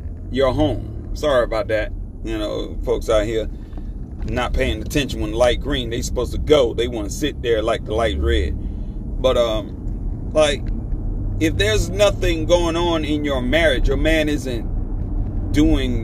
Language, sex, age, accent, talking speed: English, male, 40-59, American, 170 wpm